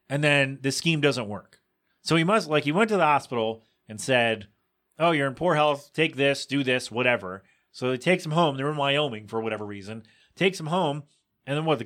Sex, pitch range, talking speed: male, 115-160 Hz, 230 wpm